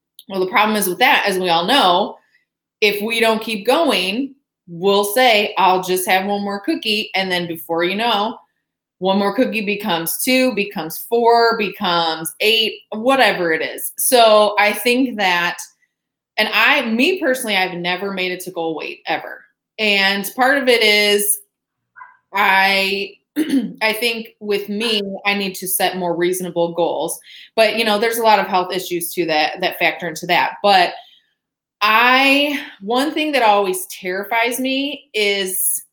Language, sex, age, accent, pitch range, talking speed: English, female, 20-39, American, 185-230 Hz, 160 wpm